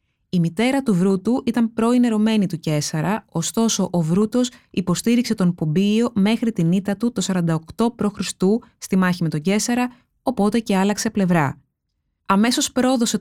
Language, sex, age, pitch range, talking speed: Greek, female, 20-39, 180-235 Hz, 145 wpm